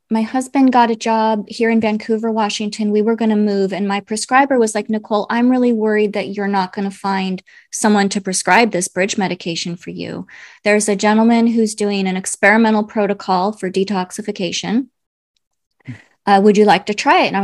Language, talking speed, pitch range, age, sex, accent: English, 195 wpm, 200-240 Hz, 20-39, female, American